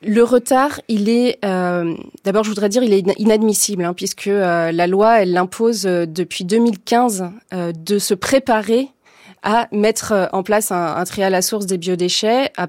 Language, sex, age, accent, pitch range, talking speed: French, female, 20-39, French, 185-225 Hz, 185 wpm